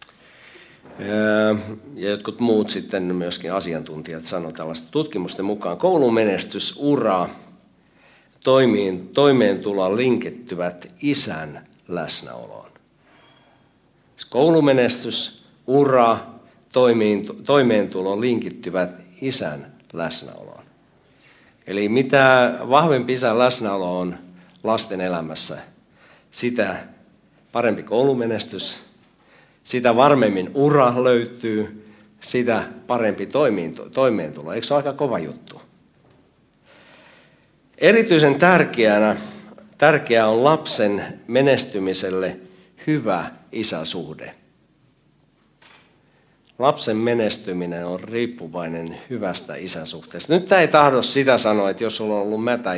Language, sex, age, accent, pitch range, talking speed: Finnish, male, 60-79, native, 90-125 Hz, 85 wpm